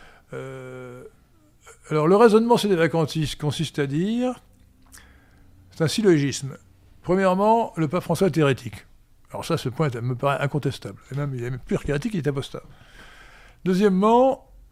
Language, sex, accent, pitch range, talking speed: French, male, French, 125-175 Hz, 155 wpm